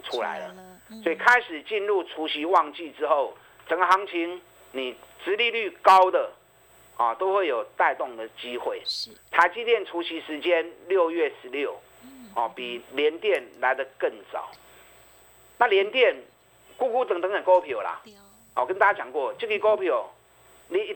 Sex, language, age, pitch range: male, Chinese, 50-69, 160-270 Hz